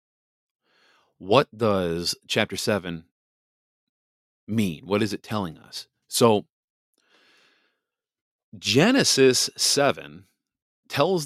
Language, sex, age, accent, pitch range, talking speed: English, male, 40-59, American, 90-115 Hz, 75 wpm